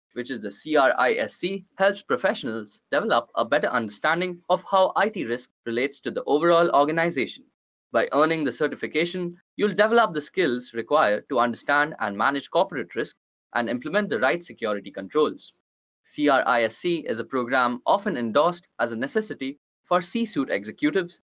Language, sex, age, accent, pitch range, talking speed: English, male, 20-39, Indian, 130-190 Hz, 150 wpm